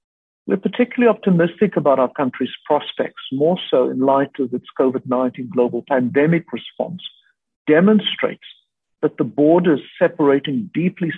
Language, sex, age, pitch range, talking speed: English, male, 50-69, 130-175 Hz, 125 wpm